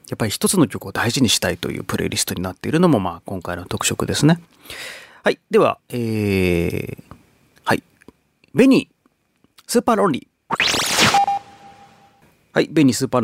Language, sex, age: Japanese, male, 30-49